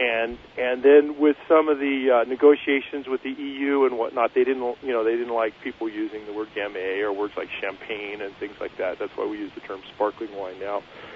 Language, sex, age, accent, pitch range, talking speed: English, male, 40-59, American, 120-165 Hz, 230 wpm